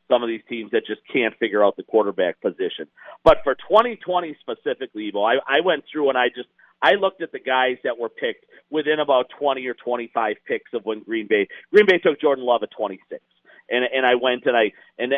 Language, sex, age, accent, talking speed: English, male, 50-69, American, 235 wpm